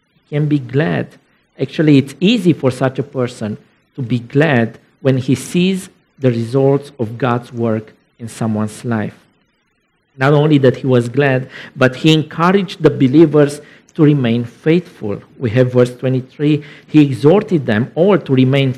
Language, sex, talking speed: English, male, 155 wpm